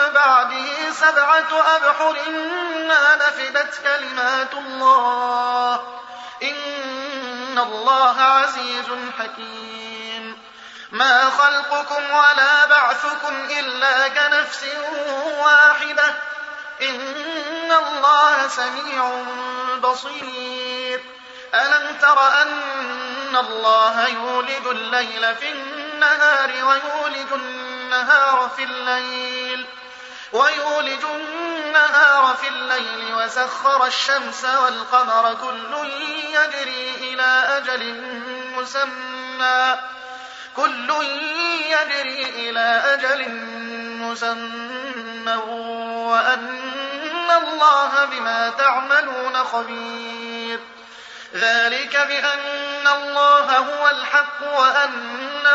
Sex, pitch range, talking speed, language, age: male, 250-295 Hz, 65 wpm, Arabic, 30-49